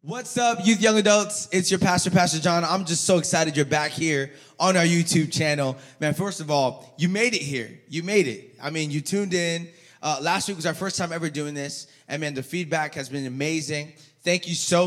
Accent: American